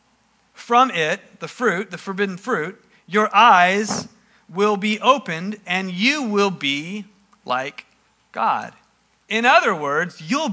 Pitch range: 180-245 Hz